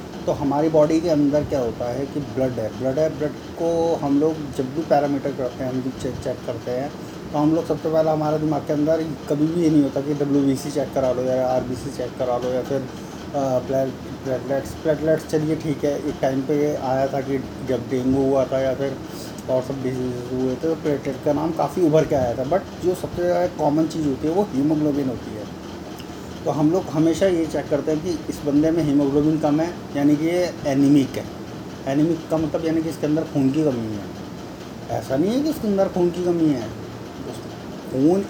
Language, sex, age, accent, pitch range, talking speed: Hindi, male, 30-49, native, 130-160 Hz, 220 wpm